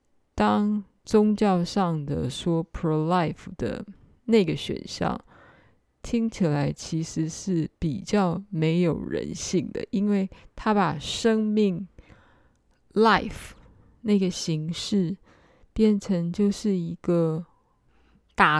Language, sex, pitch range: Chinese, female, 160-200 Hz